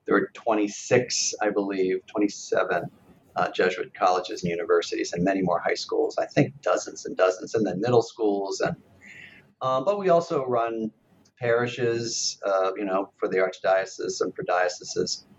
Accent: American